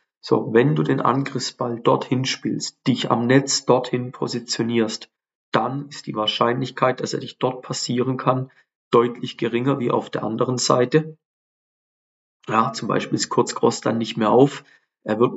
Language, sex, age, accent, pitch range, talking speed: German, male, 40-59, German, 120-135 Hz, 155 wpm